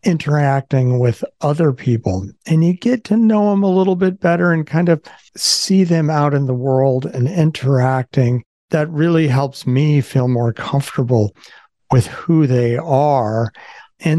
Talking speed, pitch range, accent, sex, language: 155 wpm, 125-160 Hz, American, male, English